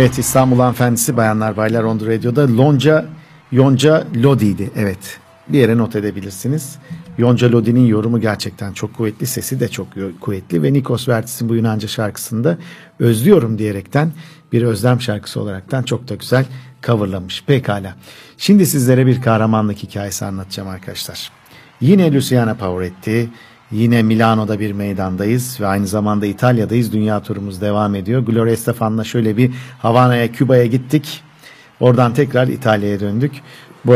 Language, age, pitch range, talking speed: Turkish, 50-69, 105-130 Hz, 135 wpm